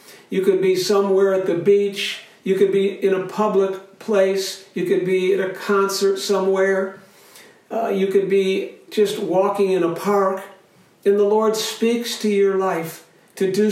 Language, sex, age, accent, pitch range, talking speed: English, male, 60-79, American, 180-215 Hz, 170 wpm